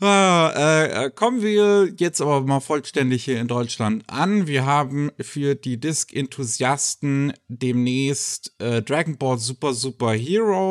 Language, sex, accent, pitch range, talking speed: German, male, German, 115-150 Hz, 135 wpm